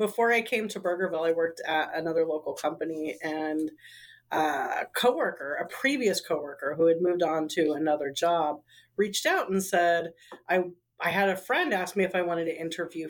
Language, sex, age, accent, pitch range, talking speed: English, female, 40-59, American, 150-180 Hz, 185 wpm